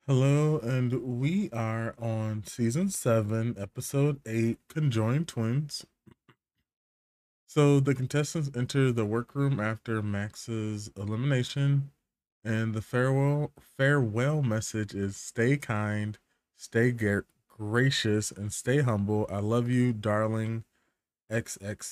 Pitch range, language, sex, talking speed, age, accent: 110-140 Hz, English, male, 105 wpm, 20-39, American